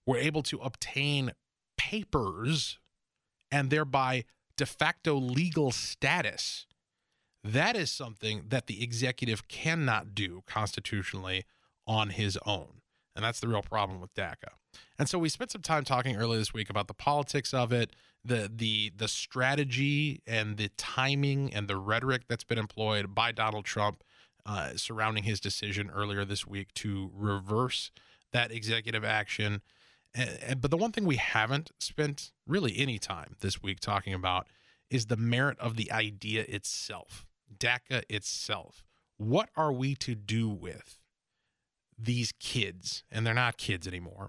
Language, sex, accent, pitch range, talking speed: English, male, American, 105-130 Hz, 150 wpm